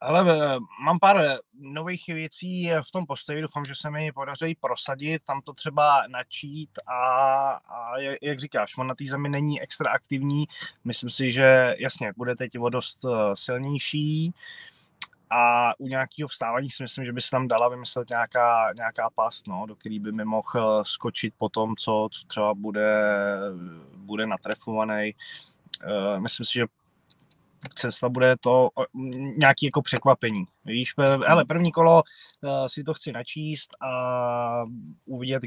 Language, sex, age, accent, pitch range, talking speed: Czech, male, 20-39, native, 120-145 Hz, 140 wpm